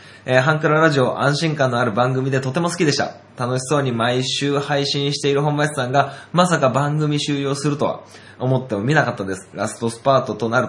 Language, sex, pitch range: Japanese, male, 110-150 Hz